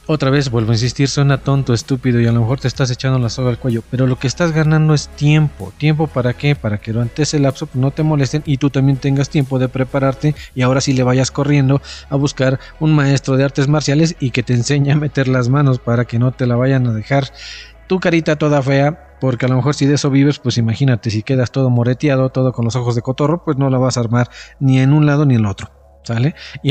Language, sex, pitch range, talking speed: Spanish, male, 125-150 Hz, 255 wpm